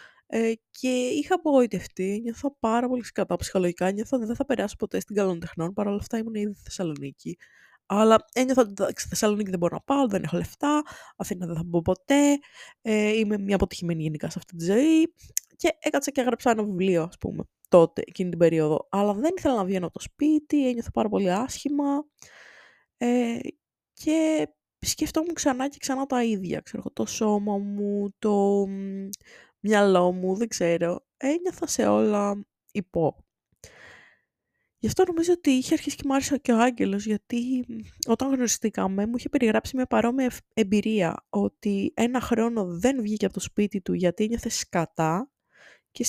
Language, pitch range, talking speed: Greek, 195-270 Hz, 160 wpm